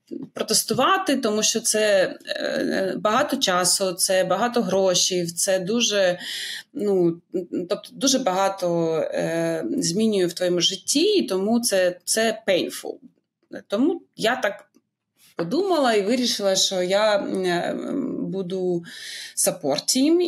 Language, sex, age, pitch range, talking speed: Ukrainian, female, 20-39, 180-240 Hz, 110 wpm